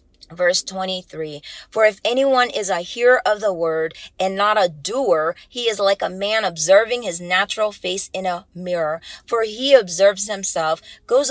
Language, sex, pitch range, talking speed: English, female, 185-250 Hz, 170 wpm